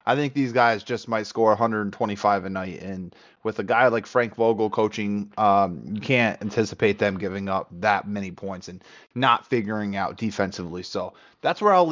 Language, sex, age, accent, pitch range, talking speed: English, male, 20-39, American, 105-140 Hz, 185 wpm